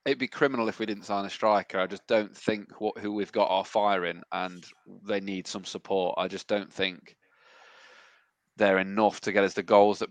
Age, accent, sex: 20-39, British, male